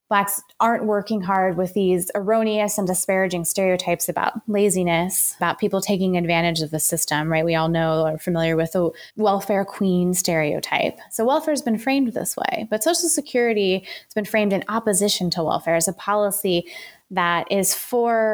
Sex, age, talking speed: female, 20-39, 175 wpm